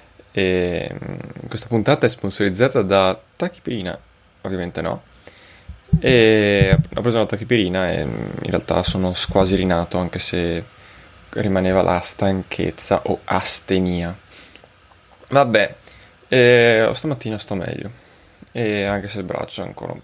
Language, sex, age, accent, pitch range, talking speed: Italian, male, 20-39, native, 95-130 Hz, 120 wpm